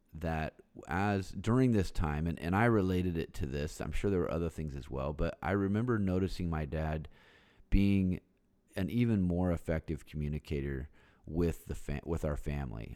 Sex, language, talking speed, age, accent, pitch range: male, English, 175 wpm, 30-49, American, 75-95 Hz